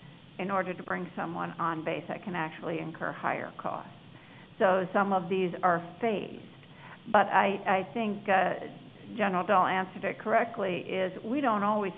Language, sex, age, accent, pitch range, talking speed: English, female, 60-79, American, 180-215 Hz, 165 wpm